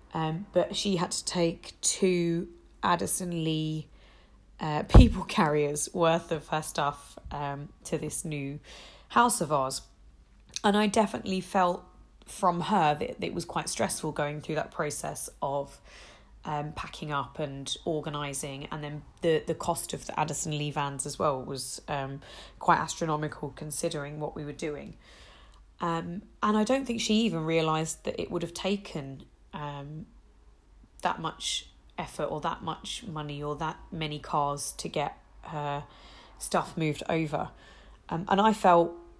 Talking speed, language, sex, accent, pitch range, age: 155 wpm, English, female, British, 145-175 Hz, 20-39